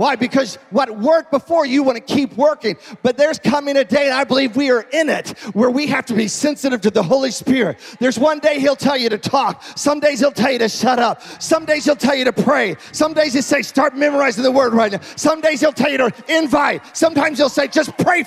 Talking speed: 255 wpm